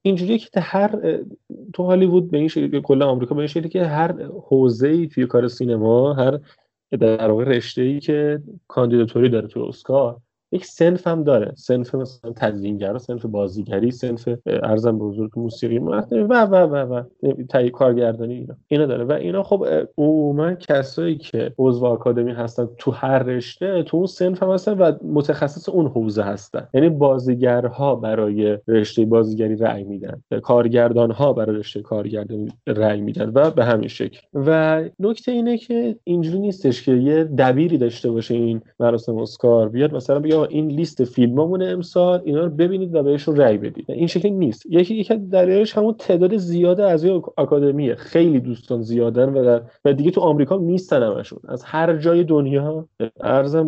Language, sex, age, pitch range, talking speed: Persian, male, 30-49, 120-175 Hz, 160 wpm